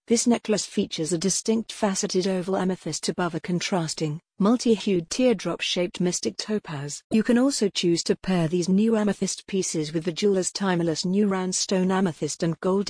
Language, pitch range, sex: English, 170-200 Hz, female